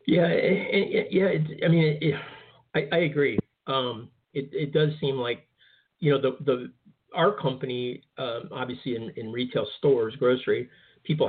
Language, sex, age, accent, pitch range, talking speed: English, male, 40-59, American, 120-200 Hz, 145 wpm